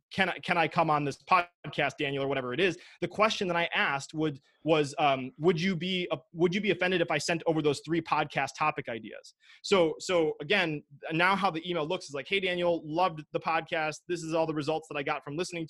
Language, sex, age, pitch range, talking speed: English, male, 20-39, 150-185 Hz, 240 wpm